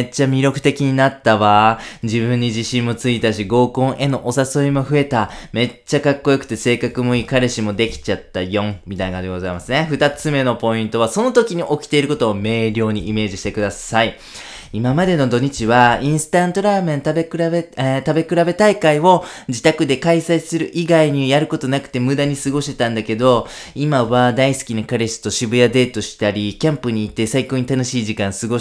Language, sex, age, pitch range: Japanese, male, 20-39, 115-150 Hz